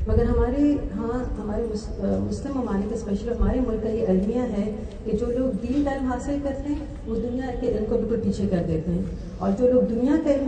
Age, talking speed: 40-59, 225 wpm